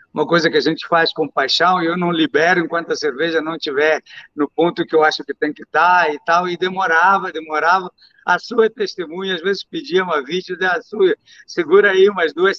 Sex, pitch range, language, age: male, 155-230 Hz, Portuguese, 60-79